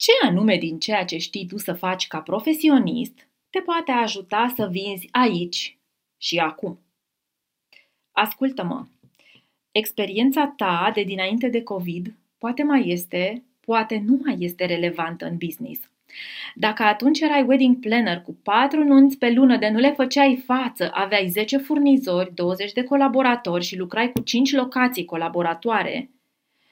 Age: 20-39